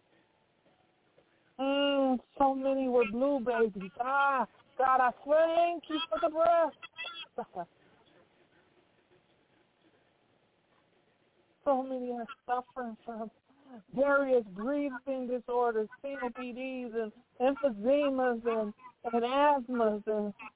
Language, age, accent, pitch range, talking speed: English, 50-69, American, 230-280 Hz, 90 wpm